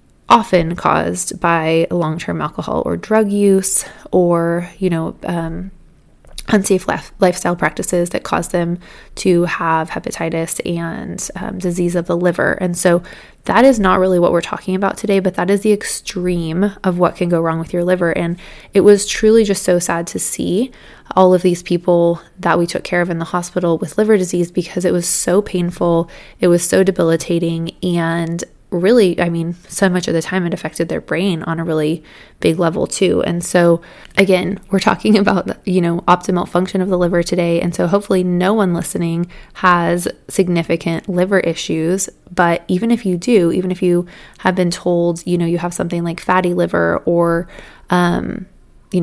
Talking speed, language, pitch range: 180 wpm, English, 170-185 Hz